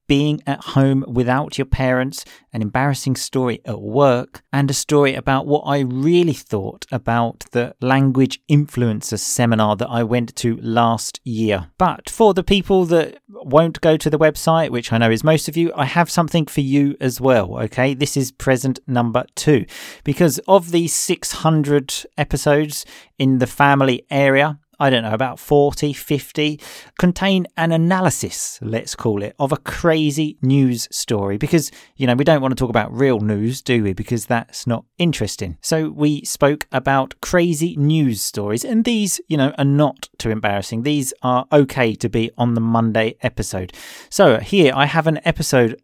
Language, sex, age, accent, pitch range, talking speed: English, male, 40-59, British, 120-155 Hz, 175 wpm